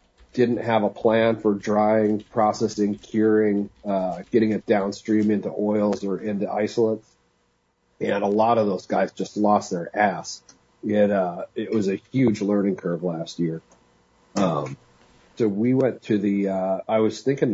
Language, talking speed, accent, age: English, 160 wpm, American, 40-59